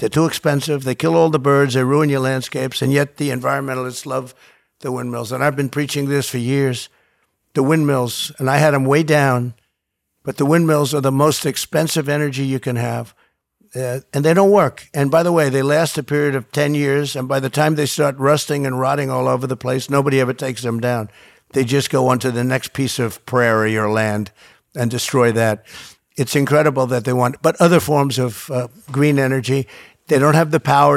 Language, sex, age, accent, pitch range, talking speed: English, male, 50-69, American, 130-155 Hz, 215 wpm